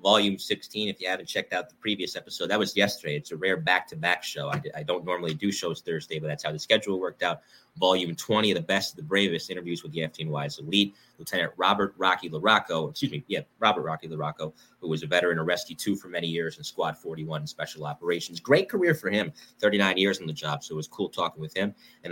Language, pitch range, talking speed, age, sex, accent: English, 85-105 Hz, 240 wpm, 30-49, male, American